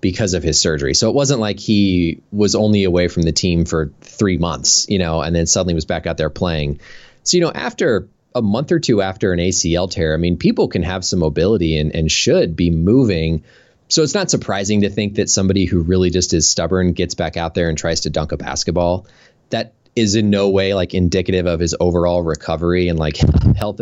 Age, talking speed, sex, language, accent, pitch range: 20-39, 225 wpm, male, English, American, 85-105 Hz